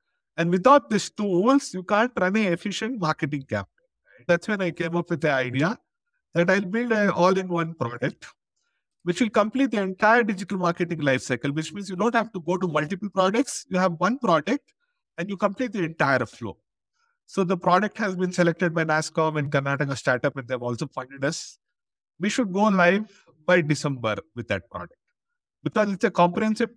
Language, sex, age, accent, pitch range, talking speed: English, male, 50-69, Indian, 150-205 Hz, 185 wpm